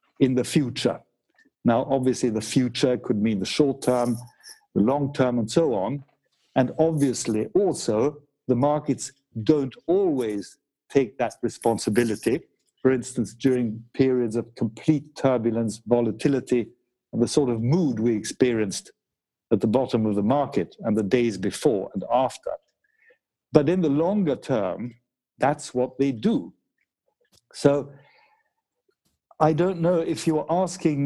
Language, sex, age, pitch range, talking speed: English, male, 60-79, 120-155 Hz, 135 wpm